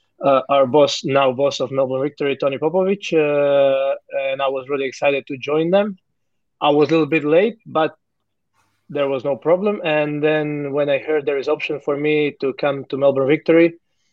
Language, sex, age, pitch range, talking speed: English, male, 20-39, 135-155 Hz, 190 wpm